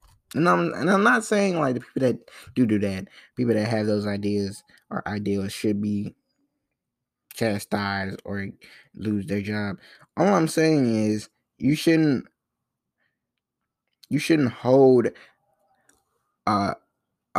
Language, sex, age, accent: English, male, 20-39, American